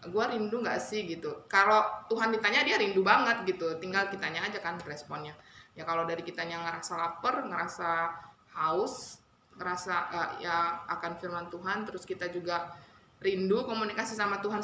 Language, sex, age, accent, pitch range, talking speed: Indonesian, female, 20-39, native, 175-240 Hz, 160 wpm